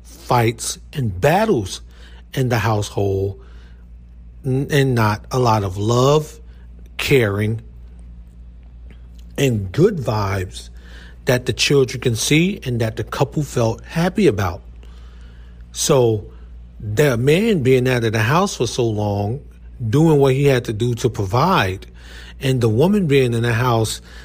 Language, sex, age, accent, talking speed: English, male, 40-59, American, 135 wpm